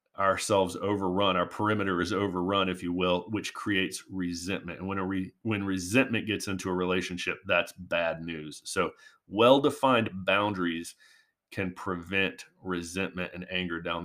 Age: 30-49